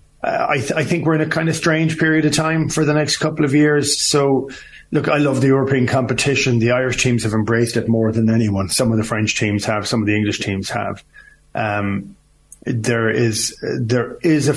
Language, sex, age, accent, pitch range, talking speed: English, male, 30-49, Irish, 110-130 Hz, 225 wpm